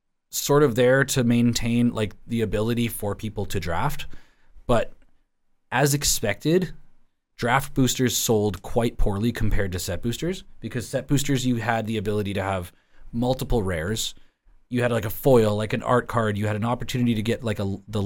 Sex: male